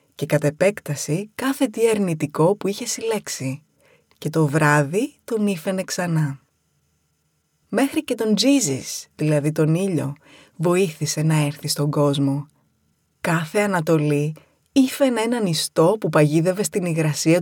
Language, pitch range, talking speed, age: Greek, 150-195 Hz, 120 wpm, 20-39